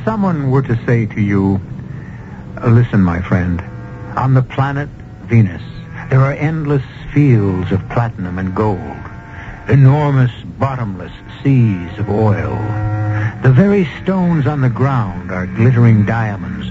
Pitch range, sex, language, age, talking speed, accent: 110-140 Hz, male, English, 60-79, 125 wpm, American